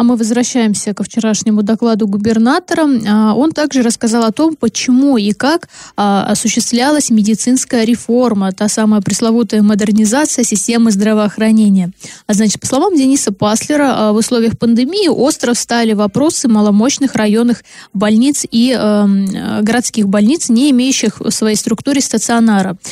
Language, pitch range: Russian, 215-260 Hz